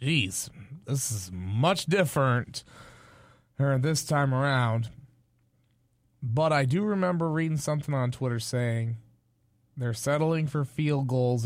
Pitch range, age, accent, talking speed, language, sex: 120-150 Hz, 20-39, American, 115 wpm, English, male